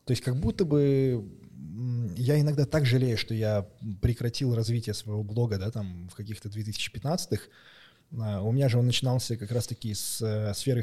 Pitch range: 105-125 Hz